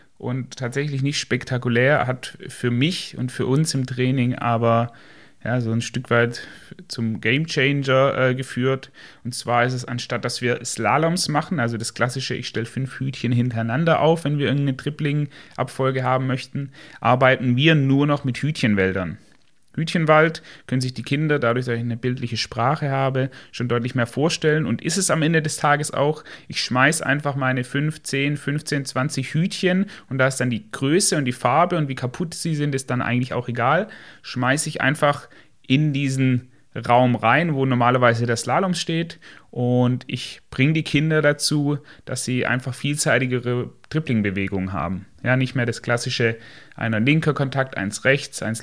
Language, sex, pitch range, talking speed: German, male, 125-150 Hz, 170 wpm